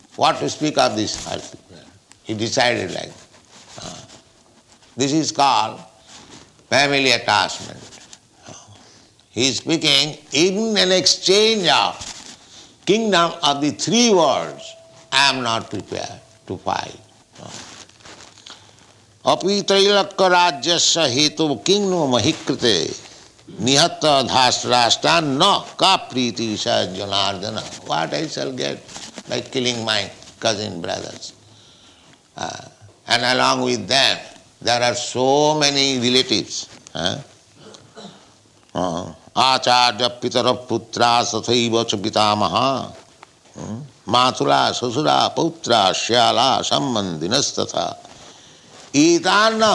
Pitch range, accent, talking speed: 115-160 Hz, Indian, 85 wpm